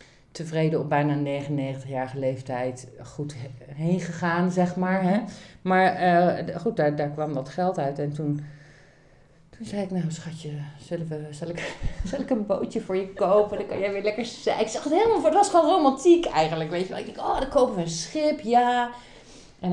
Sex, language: female, Dutch